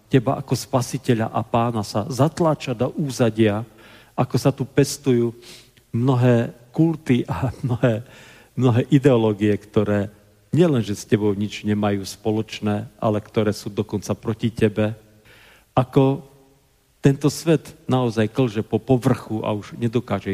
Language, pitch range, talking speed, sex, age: Slovak, 100-120 Hz, 125 wpm, male, 40-59